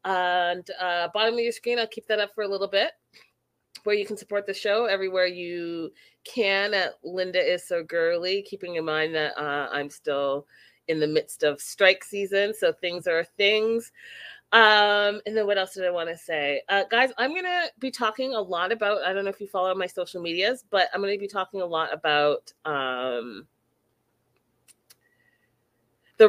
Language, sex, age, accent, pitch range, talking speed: English, female, 30-49, American, 160-210 Hz, 195 wpm